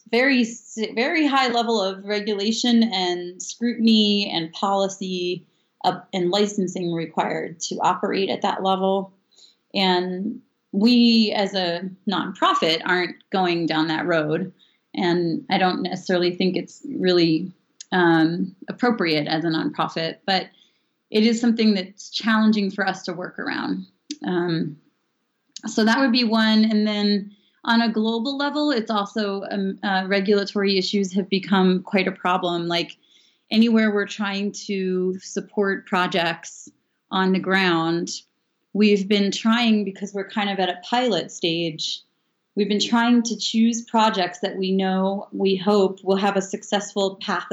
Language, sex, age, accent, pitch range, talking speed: English, female, 30-49, American, 180-220 Hz, 140 wpm